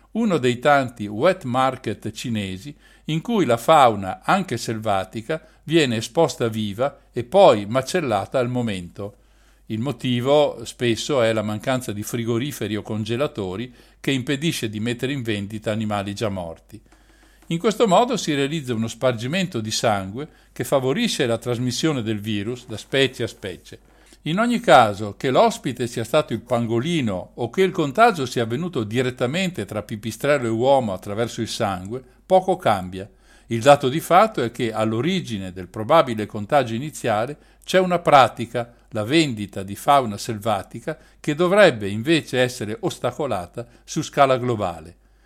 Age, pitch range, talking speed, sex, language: 50-69, 110-145 Hz, 145 wpm, male, Italian